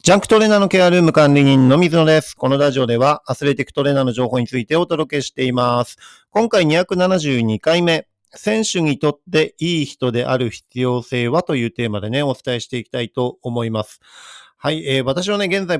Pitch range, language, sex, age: 115-145 Hz, Japanese, male, 40-59